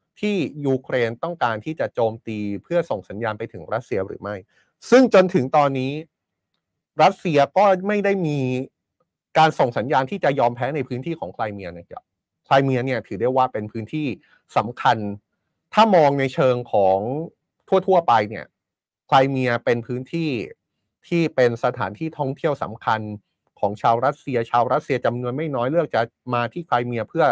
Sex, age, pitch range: male, 30-49, 115-160 Hz